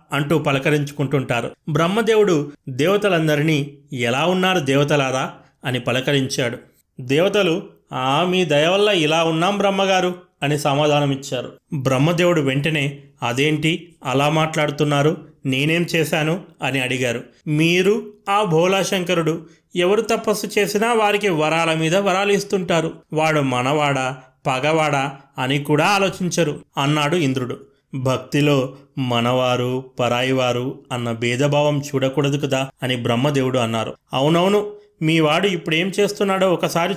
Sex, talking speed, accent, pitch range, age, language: male, 100 wpm, native, 140-180 Hz, 30-49, Telugu